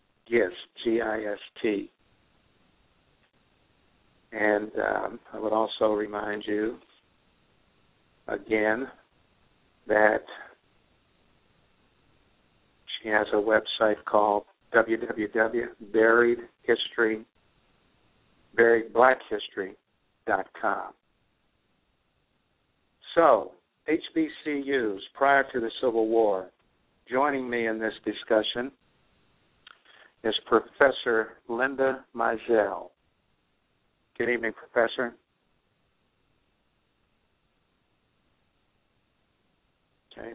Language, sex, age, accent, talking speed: English, male, 60-79, American, 55 wpm